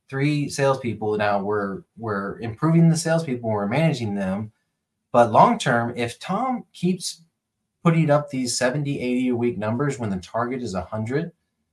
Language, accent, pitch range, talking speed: English, American, 100-135 Hz, 155 wpm